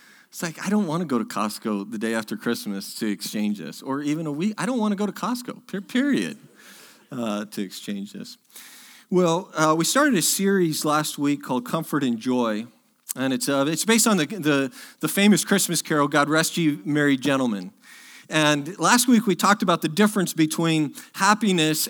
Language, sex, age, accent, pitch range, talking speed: English, male, 40-59, American, 140-190 Hz, 195 wpm